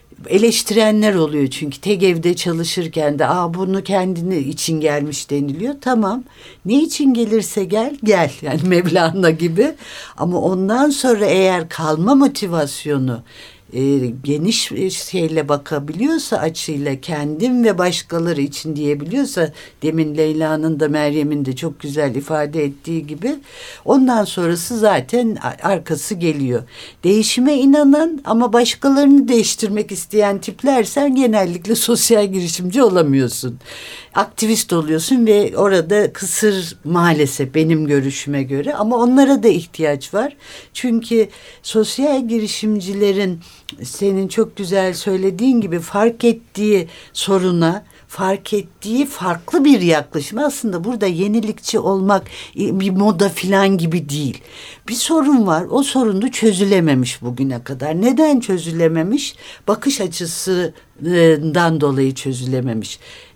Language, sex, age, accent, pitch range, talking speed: Turkish, female, 60-79, native, 155-225 Hz, 110 wpm